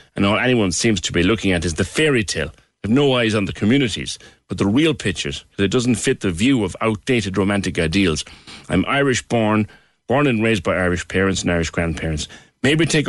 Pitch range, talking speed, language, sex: 85-110 Hz, 210 wpm, English, male